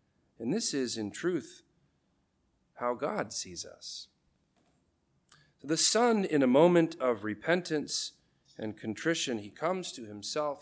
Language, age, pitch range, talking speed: English, 40-59, 110-175 Hz, 125 wpm